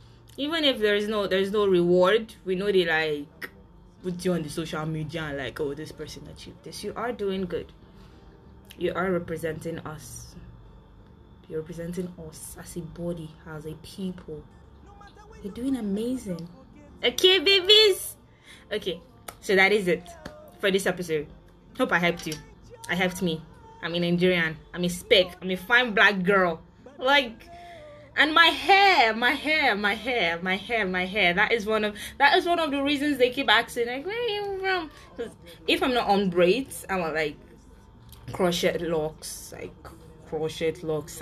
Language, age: English, 20-39